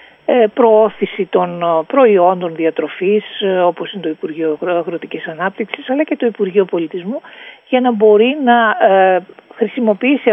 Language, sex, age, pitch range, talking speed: Greek, female, 50-69, 180-235 Hz, 115 wpm